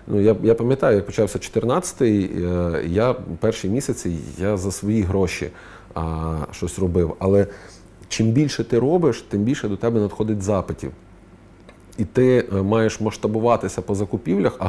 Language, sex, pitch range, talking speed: Ukrainian, male, 90-115 Hz, 145 wpm